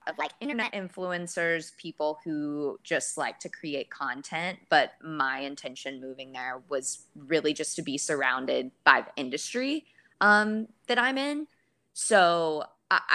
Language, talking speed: English, 140 wpm